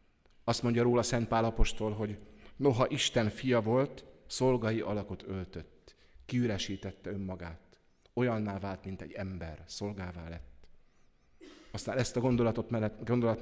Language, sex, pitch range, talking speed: Hungarian, male, 95-115 Hz, 115 wpm